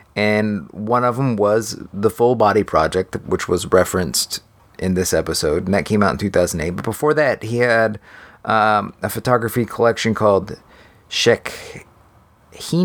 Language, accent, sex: English, American, male